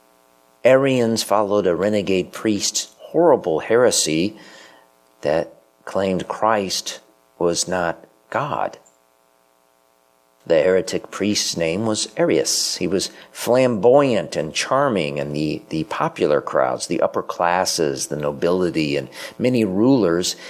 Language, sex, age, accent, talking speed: English, male, 50-69, American, 110 wpm